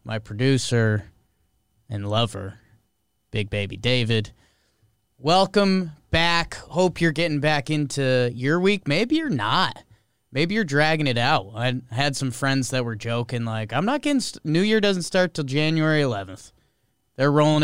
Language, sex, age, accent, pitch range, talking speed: English, male, 20-39, American, 110-160 Hz, 150 wpm